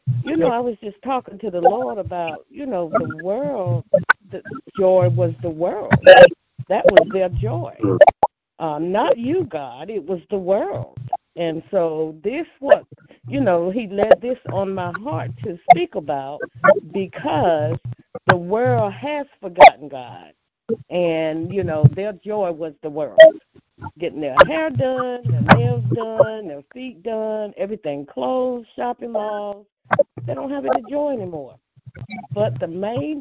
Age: 50-69